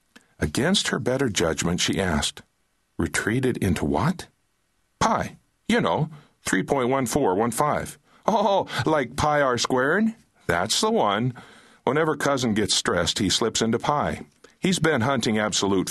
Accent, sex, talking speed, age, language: American, male, 125 wpm, 50-69, English